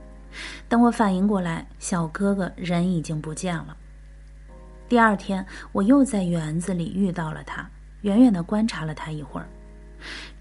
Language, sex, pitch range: Chinese, female, 170-220 Hz